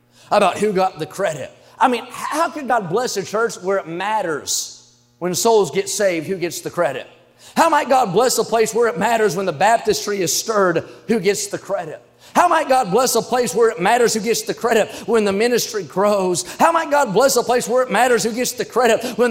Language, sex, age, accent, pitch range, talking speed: English, male, 30-49, American, 195-255 Hz, 225 wpm